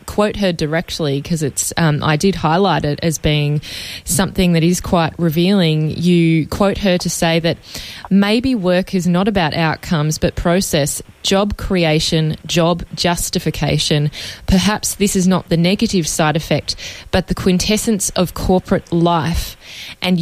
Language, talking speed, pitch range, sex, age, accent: English, 140 wpm, 155-185 Hz, female, 20-39, Australian